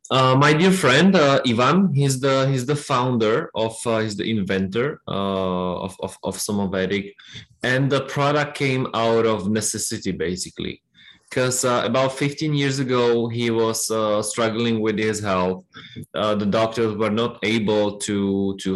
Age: 20-39